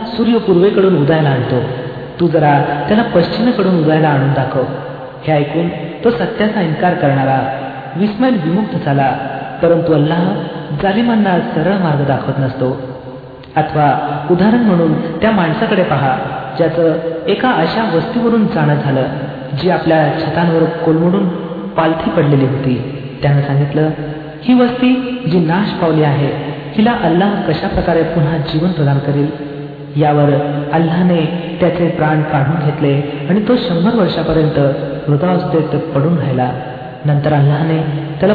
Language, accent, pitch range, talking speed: Marathi, native, 145-180 Hz, 95 wpm